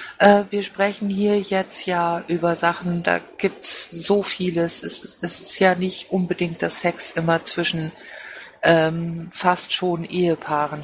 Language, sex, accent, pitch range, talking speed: German, female, German, 175-205 Hz, 135 wpm